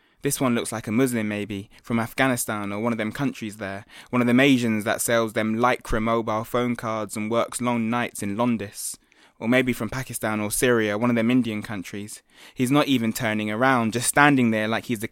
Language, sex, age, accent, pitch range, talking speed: English, male, 20-39, British, 110-125 Hz, 215 wpm